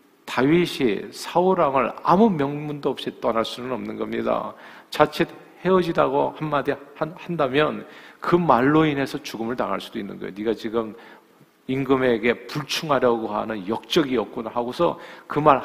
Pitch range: 135-185 Hz